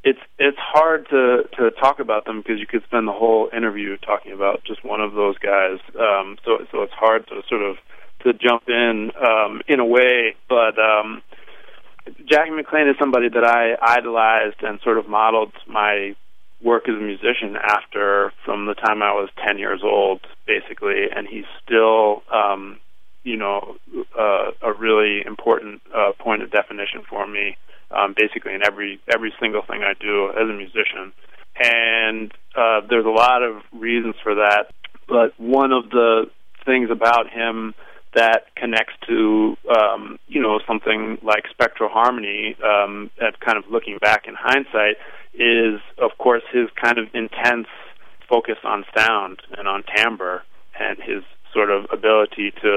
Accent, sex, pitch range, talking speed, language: American, male, 105-120 Hz, 165 wpm, English